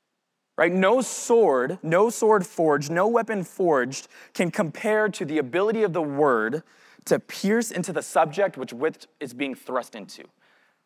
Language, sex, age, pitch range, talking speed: English, male, 20-39, 155-215 Hz, 150 wpm